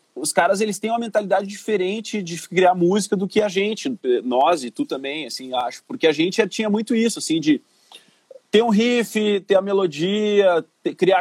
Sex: male